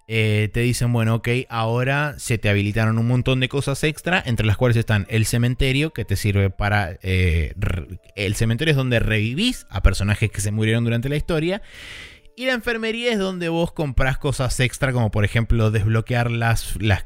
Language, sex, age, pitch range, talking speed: Spanish, male, 20-39, 105-125 Hz, 190 wpm